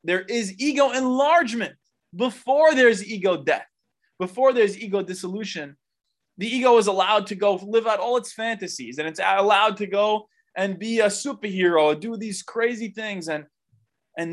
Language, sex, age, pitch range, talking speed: English, male, 20-39, 155-220 Hz, 160 wpm